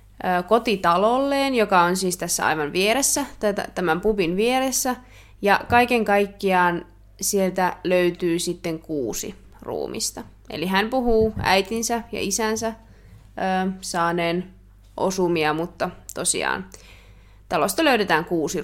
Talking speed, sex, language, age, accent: 100 wpm, female, Finnish, 20-39, native